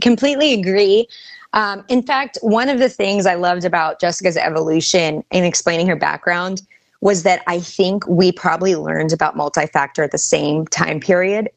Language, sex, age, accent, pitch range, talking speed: English, female, 20-39, American, 175-215 Hz, 165 wpm